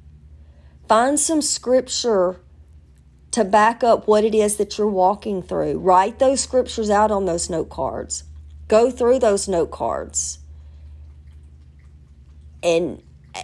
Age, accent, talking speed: 40-59, American, 120 wpm